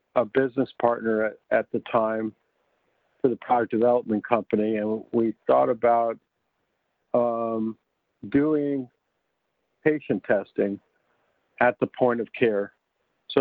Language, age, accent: English, 50-69, American